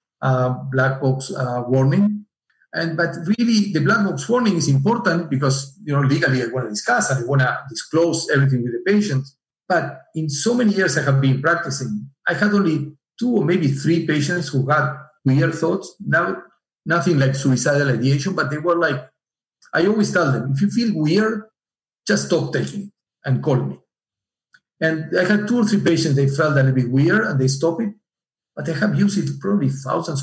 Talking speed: 200 wpm